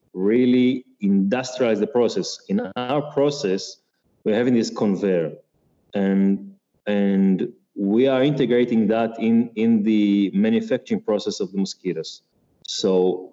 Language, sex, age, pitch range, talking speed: English, male, 30-49, 100-145 Hz, 115 wpm